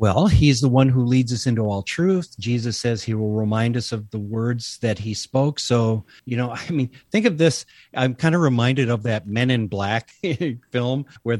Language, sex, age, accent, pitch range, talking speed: English, male, 50-69, American, 115-150 Hz, 215 wpm